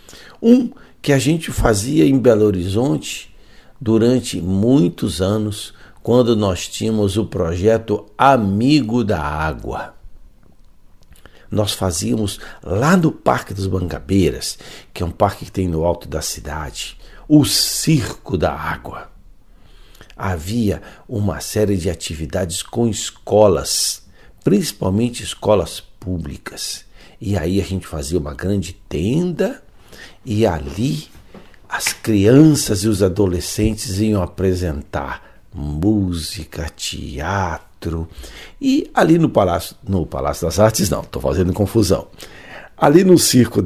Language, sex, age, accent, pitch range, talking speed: Portuguese, male, 60-79, Brazilian, 90-115 Hz, 115 wpm